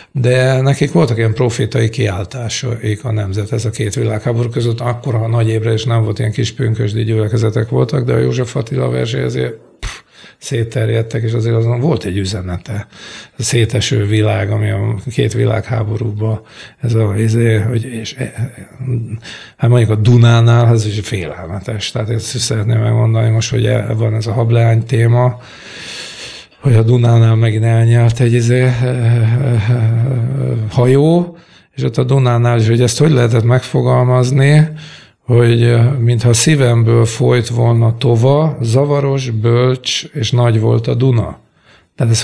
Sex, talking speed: male, 150 wpm